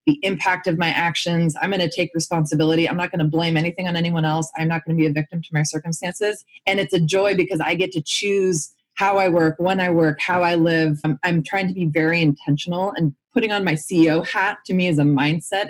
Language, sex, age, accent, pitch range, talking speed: English, female, 20-39, American, 150-180 Hz, 235 wpm